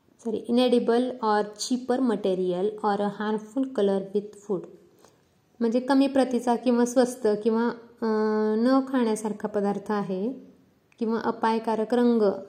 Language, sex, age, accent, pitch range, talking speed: Marathi, female, 20-39, native, 205-245 Hz, 110 wpm